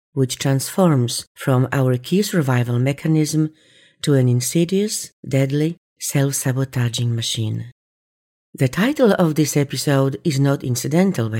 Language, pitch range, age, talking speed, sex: English, 130-165 Hz, 50-69, 115 wpm, female